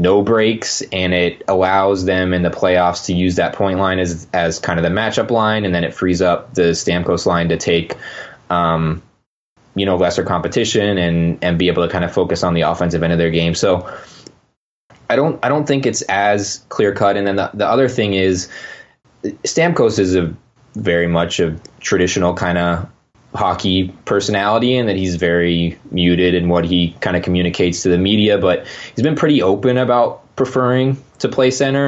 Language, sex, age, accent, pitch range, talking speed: English, male, 20-39, American, 85-100 Hz, 195 wpm